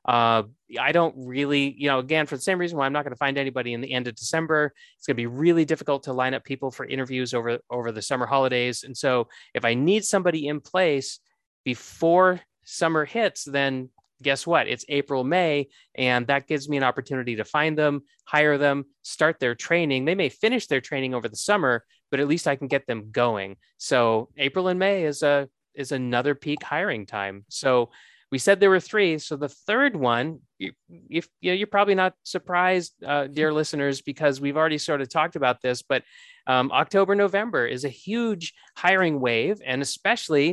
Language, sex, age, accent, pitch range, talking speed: English, male, 30-49, American, 130-160 Hz, 205 wpm